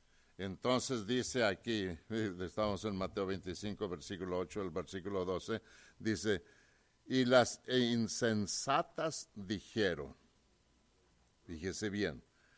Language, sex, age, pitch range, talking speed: English, male, 60-79, 100-150 Hz, 90 wpm